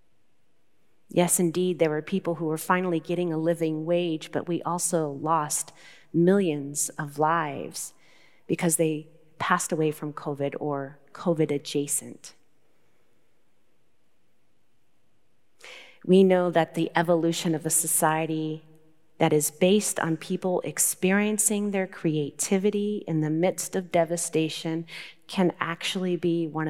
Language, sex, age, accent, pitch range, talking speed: English, female, 30-49, American, 155-175 Hz, 115 wpm